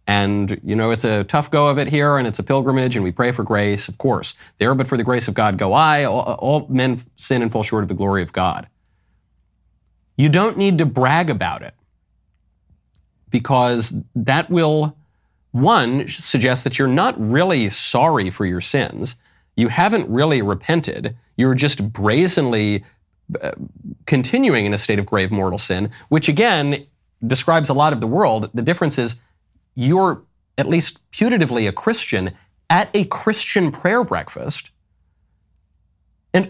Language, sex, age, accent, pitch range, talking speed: English, male, 30-49, American, 100-150 Hz, 165 wpm